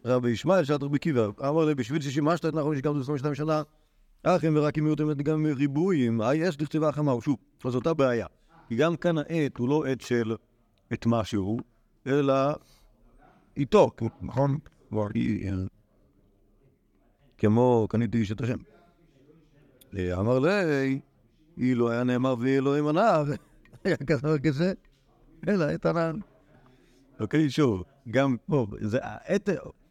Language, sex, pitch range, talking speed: Hebrew, male, 120-160 Hz, 120 wpm